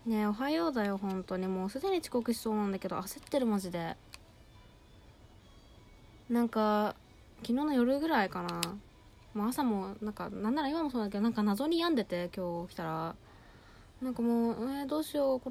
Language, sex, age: Japanese, female, 20-39